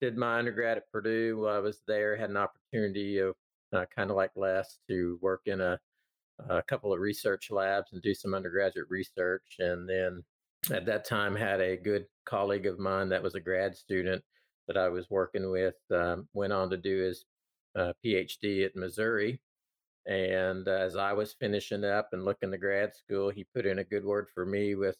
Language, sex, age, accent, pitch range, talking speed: English, male, 50-69, American, 95-115 Hz, 200 wpm